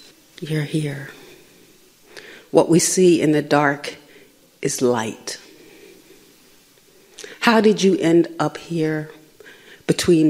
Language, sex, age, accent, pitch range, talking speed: English, female, 40-59, American, 150-185 Hz, 100 wpm